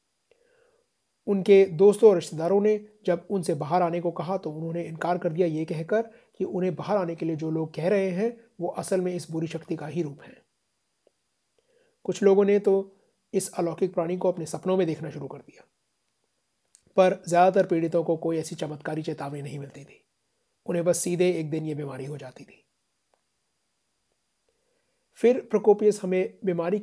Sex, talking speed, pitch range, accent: male, 175 wpm, 165-205 Hz, native